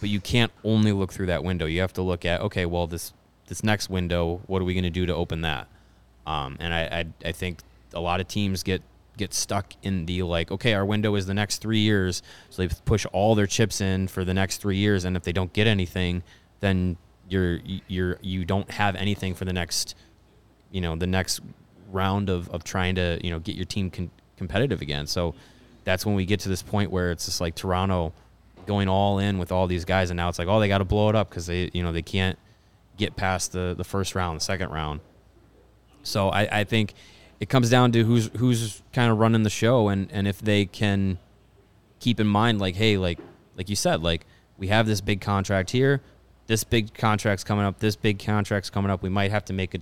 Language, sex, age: English, male, 20-39